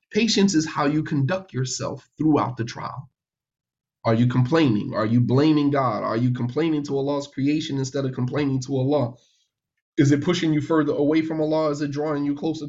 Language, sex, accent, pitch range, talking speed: English, male, American, 140-185 Hz, 190 wpm